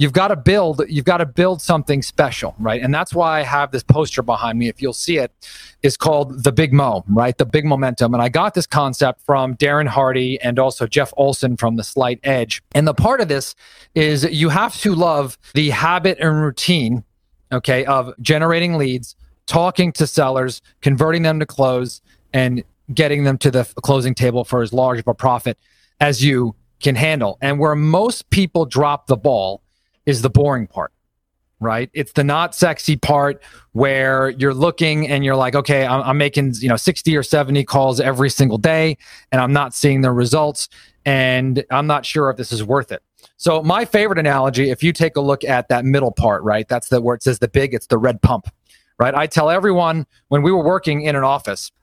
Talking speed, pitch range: 205 wpm, 125-160 Hz